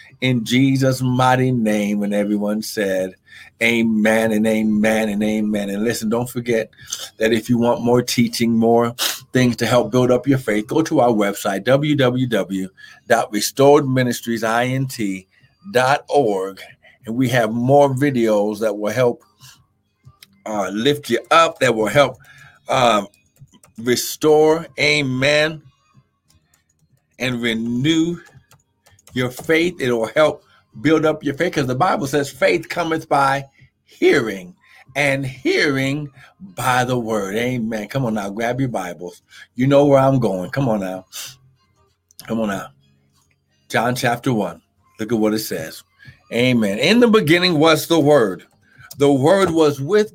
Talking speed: 135 wpm